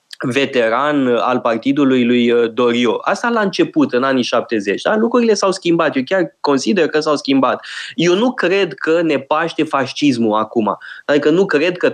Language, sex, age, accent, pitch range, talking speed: Romanian, male, 20-39, native, 130-200 Hz, 165 wpm